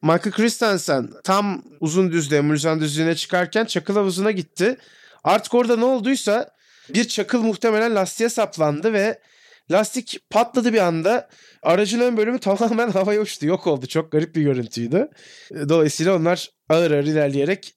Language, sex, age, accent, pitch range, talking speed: Turkish, male, 30-49, native, 145-195 Hz, 140 wpm